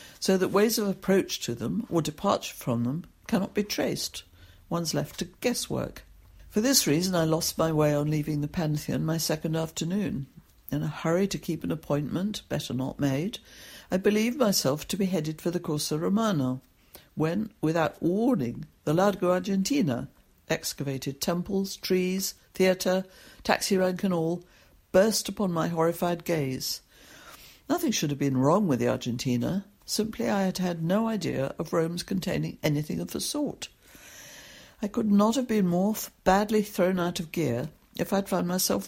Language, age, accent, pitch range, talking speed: English, 60-79, British, 150-200 Hz, 165 wpm